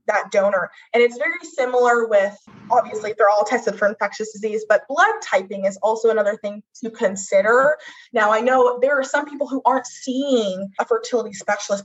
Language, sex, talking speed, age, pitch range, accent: English, female, 180 wpm, 20-39, 210-280 Hz, American